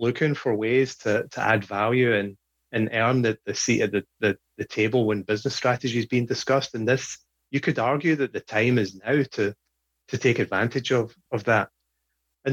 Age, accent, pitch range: 30-49, British, 105-125 Hz